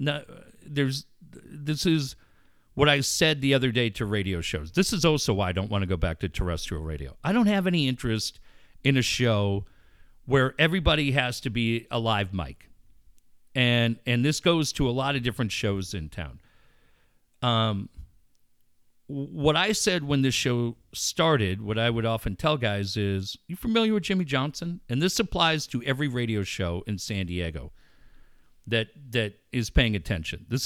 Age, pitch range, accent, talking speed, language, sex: 50-69, 105-155 Hz, American, 175 wpm, English, male